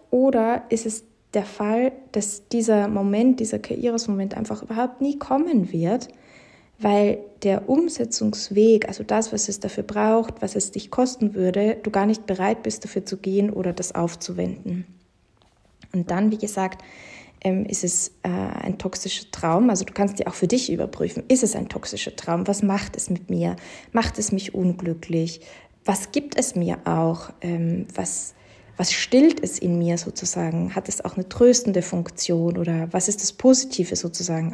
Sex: female